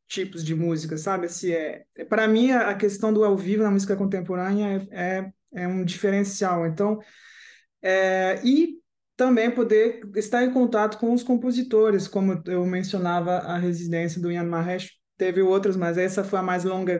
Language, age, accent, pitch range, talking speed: Portuguese, 20-39, Brazilian, 180-225 Hz, 170 wpm